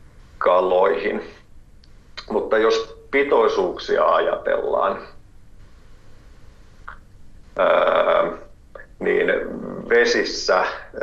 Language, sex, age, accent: Finnish, male, 50-69, native